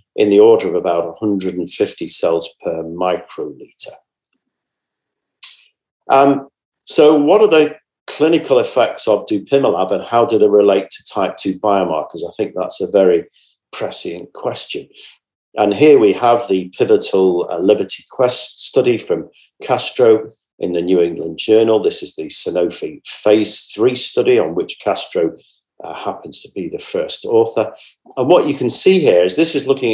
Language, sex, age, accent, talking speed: English, male, 50-69, British, 155 wpm